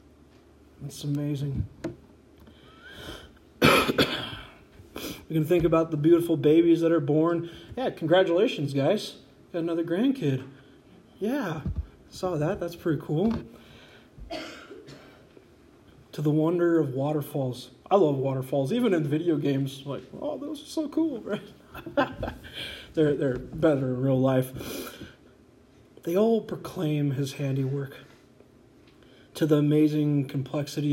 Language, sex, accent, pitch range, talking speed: English, male, American, 140-160 Hz, 115 wpm